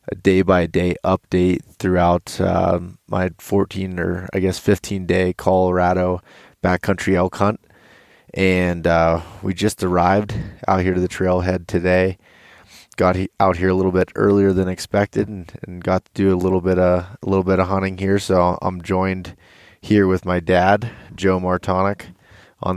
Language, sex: English, male